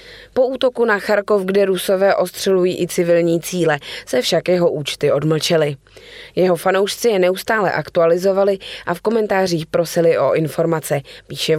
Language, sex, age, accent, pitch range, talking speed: Czech, female, 20-39, native, 170-215 Hz, 140 wpm